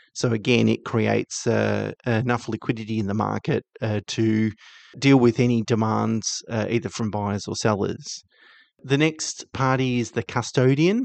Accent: Australian